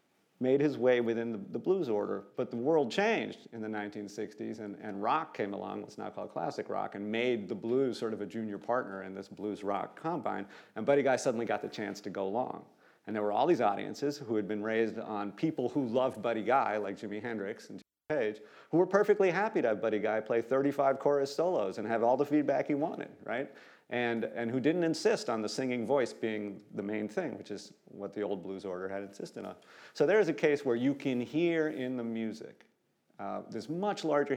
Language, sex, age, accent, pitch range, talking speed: English, male, 40-59, American, 105-135 Hz, 225 wpm